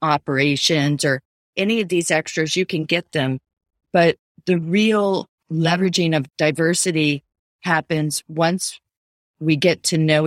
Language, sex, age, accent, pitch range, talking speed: English, female, 40-59, American, 150-185 Hz, 130 wpm